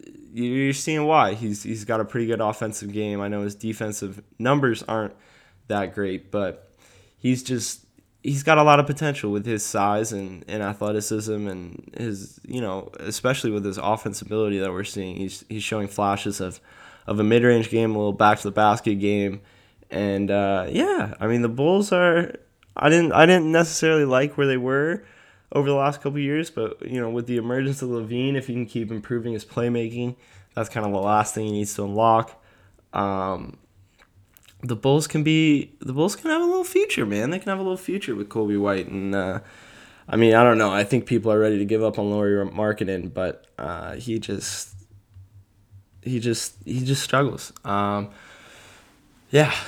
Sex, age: male, 10-29